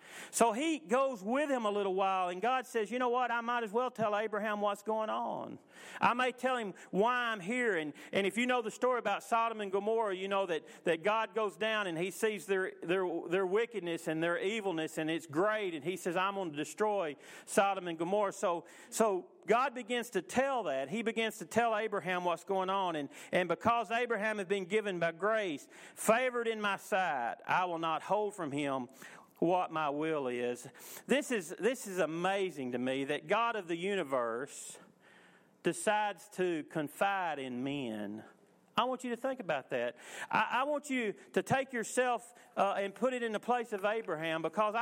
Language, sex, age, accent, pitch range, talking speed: English, male, 40-59, American, 185-235 Hz, 200 wpm